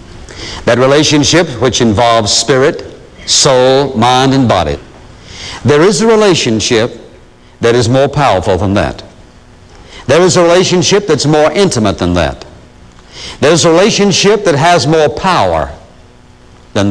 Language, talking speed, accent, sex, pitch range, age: English, 130 wpm, American, male, 100-150 Hz, 60-79